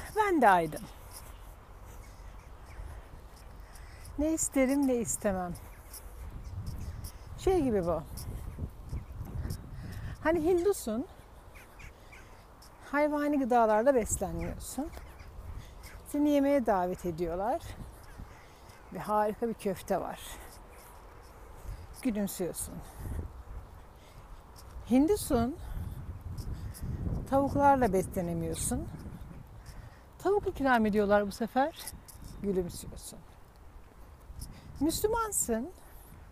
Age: 60-79